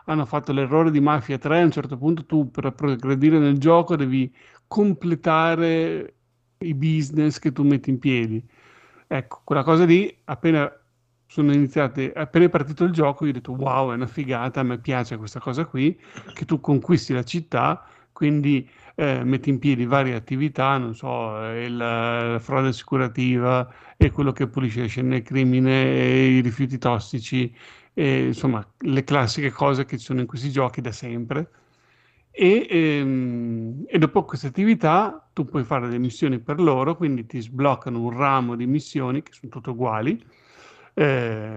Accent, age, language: native, 50-69, Italian